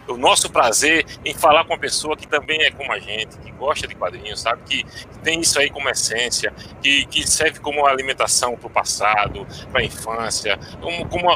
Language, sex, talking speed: Portuguese, male, 200 wpm